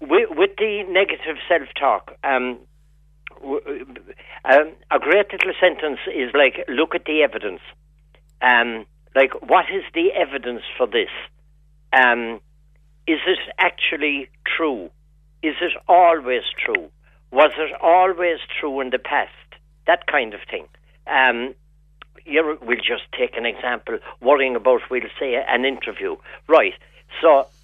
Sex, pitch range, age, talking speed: male, 150-185 Hz, 60-79, 135 wpm